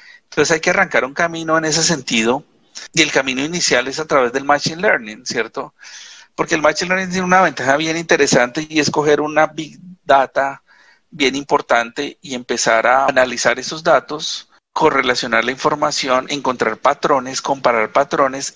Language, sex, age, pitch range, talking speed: Spanish, male, 40-59, 130-165 Hz, 160 wpm